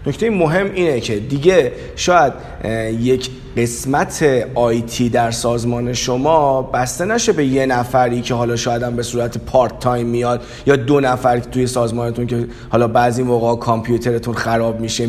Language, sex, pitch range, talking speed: Persian, male, 115-145 Hz, 155 wpm